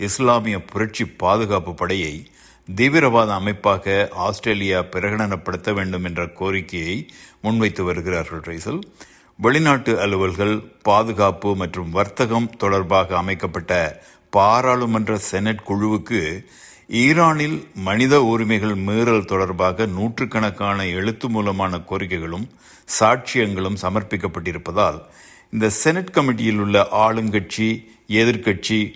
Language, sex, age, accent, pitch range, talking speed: Tamil, male, 60-79, native, 95-115 Hz, 85 wpm